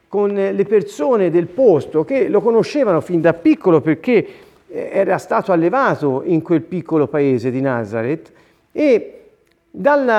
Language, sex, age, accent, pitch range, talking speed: Italian, male, 50-69, native, 160-250 Hz, 135 wpm